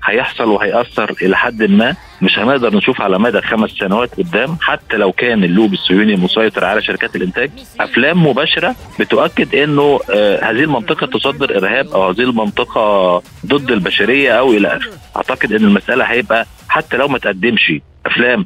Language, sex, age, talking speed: Arabic, male, 50-69, 150 wpm